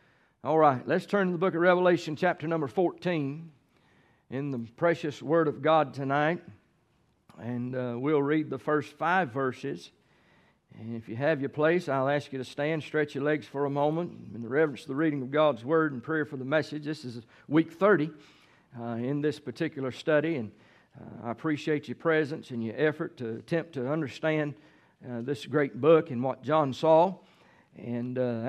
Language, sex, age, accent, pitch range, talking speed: English, male, 50-69, American, 140-180 Hz, 190 wpm